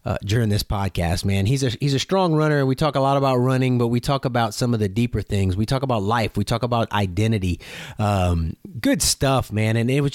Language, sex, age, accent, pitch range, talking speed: English, male, 30-49, American, 115-180 Hz, 245 wpm